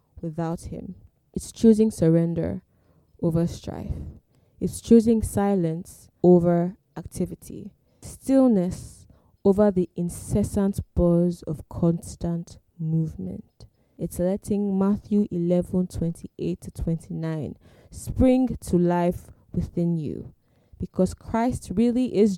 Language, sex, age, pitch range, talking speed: English, female, 20-39, 165-195 Hz, 100 wpm